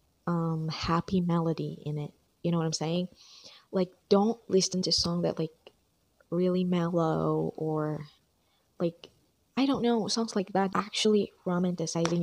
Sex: female